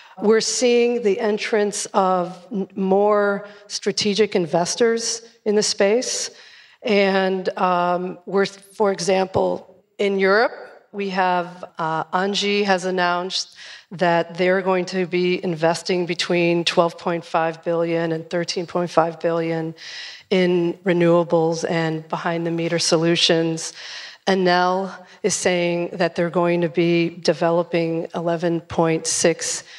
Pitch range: 170-195 Hz